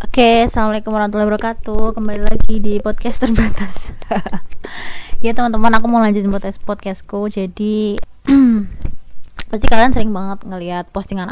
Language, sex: Indonesian, female